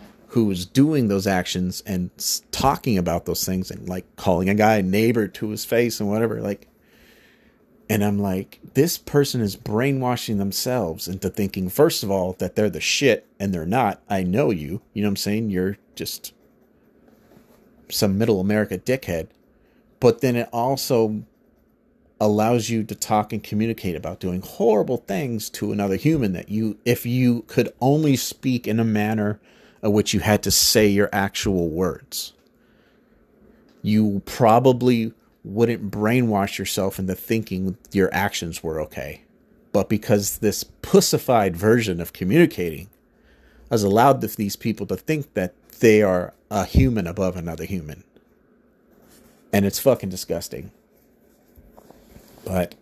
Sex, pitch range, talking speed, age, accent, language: male, 95-115 Hz, 145 wpm, 30-49, American, English